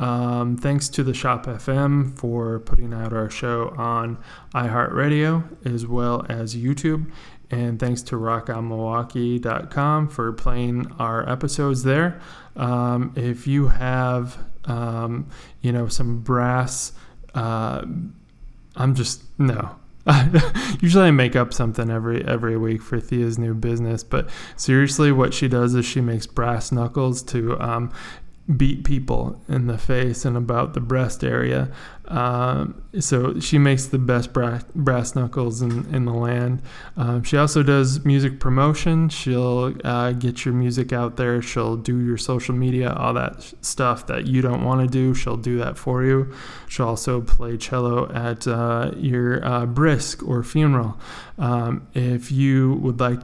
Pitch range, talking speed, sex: 120-140 Hz, 150 wpm, male